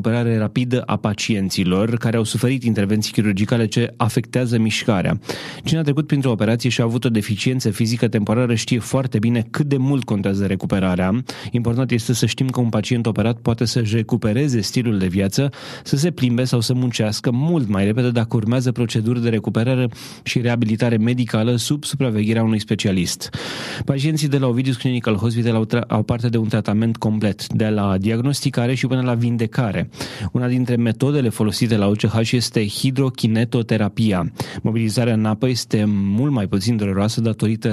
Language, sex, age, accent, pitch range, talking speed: Romanian, male, 20-39, native, 110-125 Hz, 165 wpm